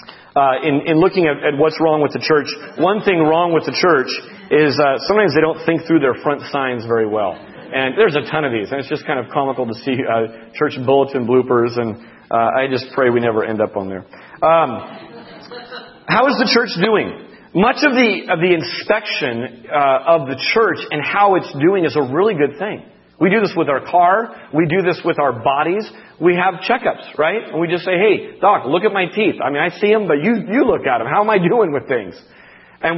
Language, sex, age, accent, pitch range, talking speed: English, male, 40-59, American, 130-180 Hz, 230 wpm